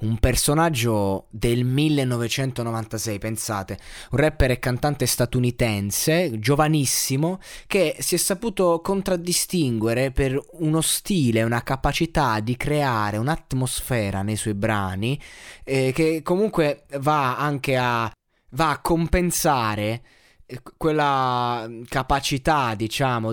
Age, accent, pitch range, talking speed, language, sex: 20-39, native, 115-155 Hz, 100 wpm, Italian, male